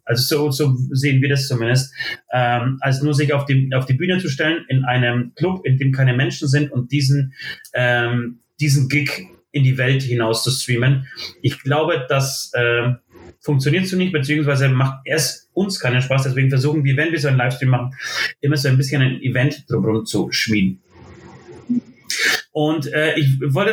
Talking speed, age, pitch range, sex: 180 wpm, 30-49, 135-170 Hz, male